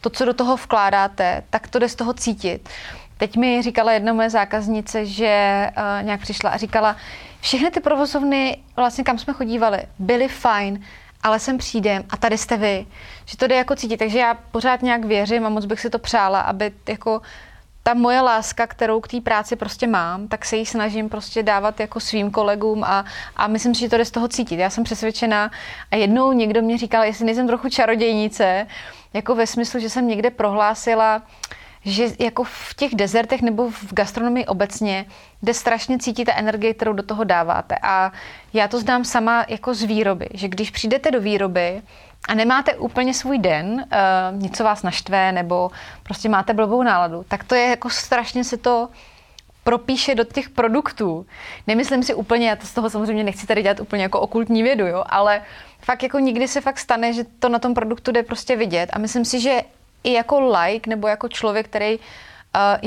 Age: 20-39